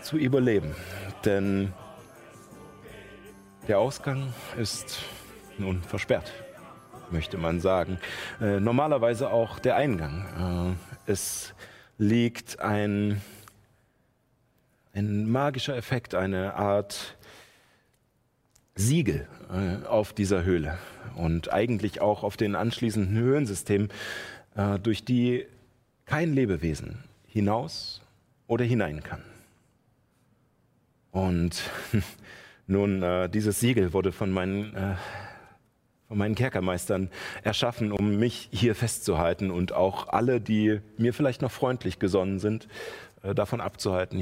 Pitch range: 95-120 Hz